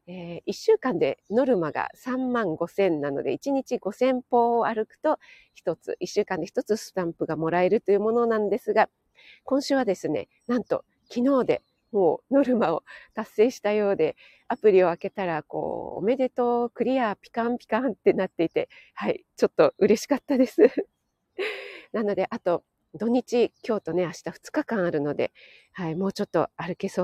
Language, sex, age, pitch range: Japanese, female, 40-59, 195-265 Hz